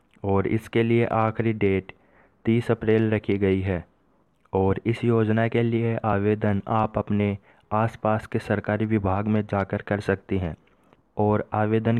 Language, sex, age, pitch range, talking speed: Hindi, male, 20-39, 100-110 Hz, 145 wpm